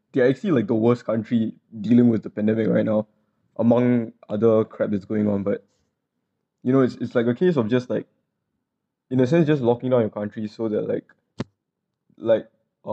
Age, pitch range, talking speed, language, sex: 20-39, 110-125 Hz, 190 wpm, English, male